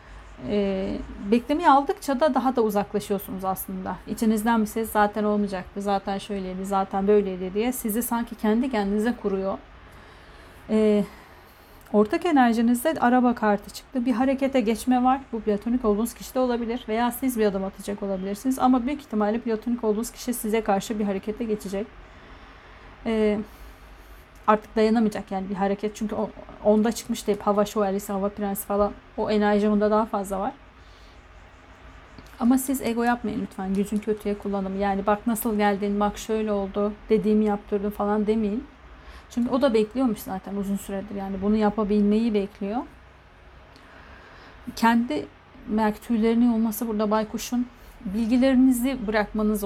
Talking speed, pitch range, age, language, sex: 140 wpm, 200-235 Hz, 40-59, Turkish, female